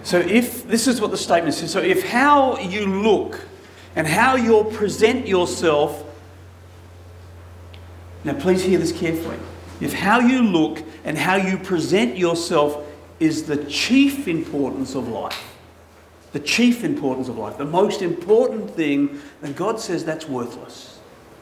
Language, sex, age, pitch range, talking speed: English, male, 40-59, 135-200 Hz, 145 wpm